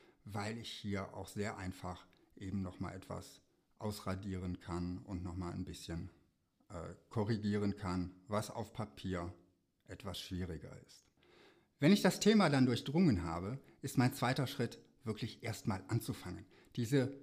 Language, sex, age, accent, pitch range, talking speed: German, male, 60-79, German, 105-140 Hz, 135 wpm